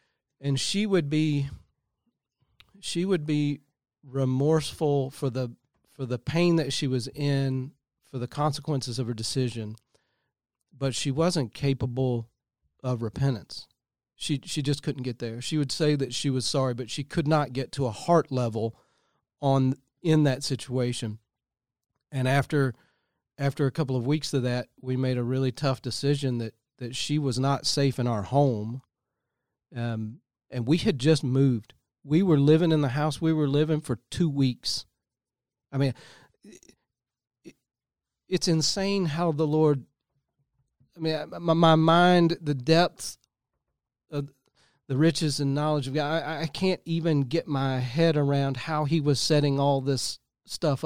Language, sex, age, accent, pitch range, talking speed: English, male, 40-59, American, 130-155 Hz, 155 wpm